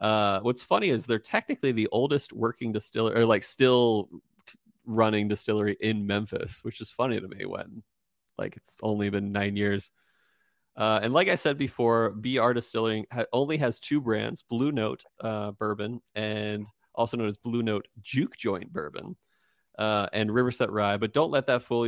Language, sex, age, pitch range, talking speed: English, male, 30-49, 105-125 Hz, 175 wpm